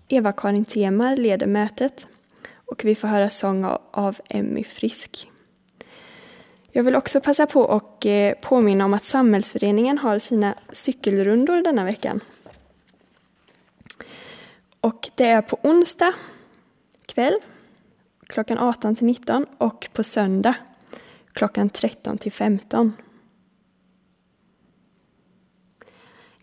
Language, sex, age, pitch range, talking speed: Swedish, female, 20-39, 205-250 Hz, 90 wpm